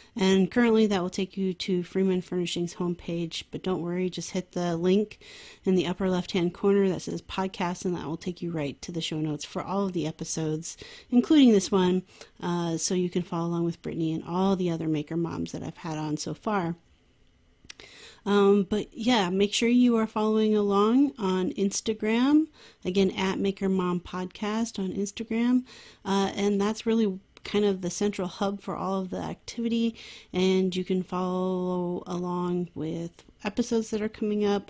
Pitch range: 175-210 Hz